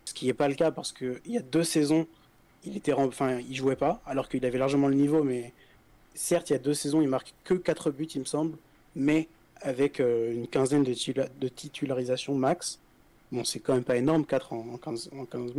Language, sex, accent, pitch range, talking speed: French, male, French, 130-160 Hz, 230 wpm